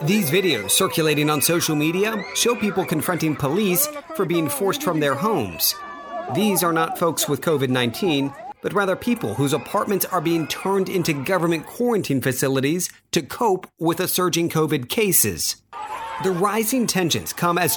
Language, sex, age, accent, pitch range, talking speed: English, male, 40-59, American, 150-195 Hz, 155 wpm